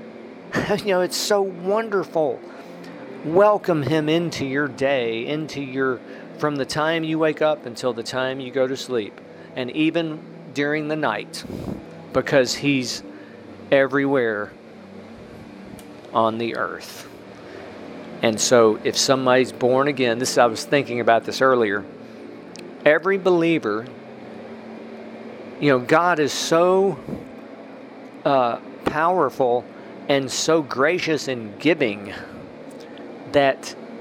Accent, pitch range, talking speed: American, 125-160 Hz, 115 wpm